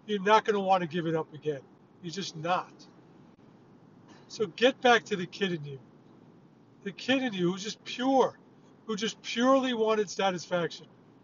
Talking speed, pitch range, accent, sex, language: 175 wpm, 180-230 Hz, American, male, English